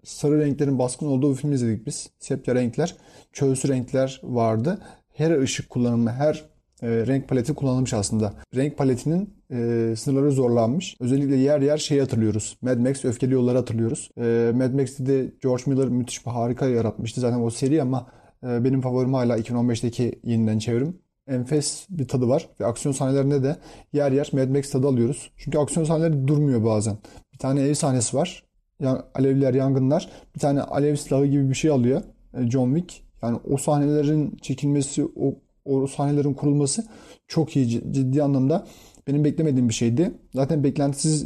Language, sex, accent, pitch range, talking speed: Turkish, male, native, 125-145 Hz, 155 wpm